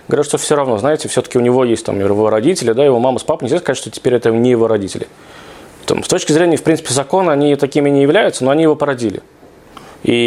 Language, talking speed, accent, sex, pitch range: Russian, 235 wpm, native, male, 120-160 Hz